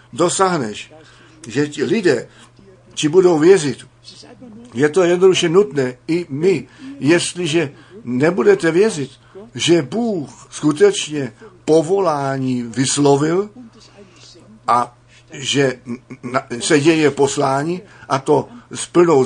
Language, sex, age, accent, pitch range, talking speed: Czech, male, 50-69, native, 130-165 Hz, 95 wpm